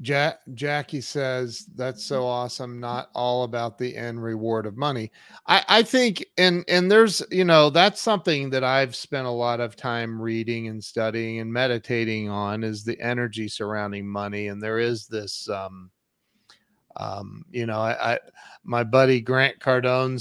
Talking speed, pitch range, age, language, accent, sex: 165 wpm, 120-190 Hz, 40-59, English, American, male